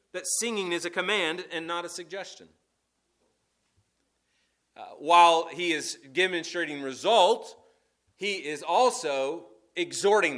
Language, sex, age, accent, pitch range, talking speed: English, male, 30-49, American, 150-245 Hz, 110 wpm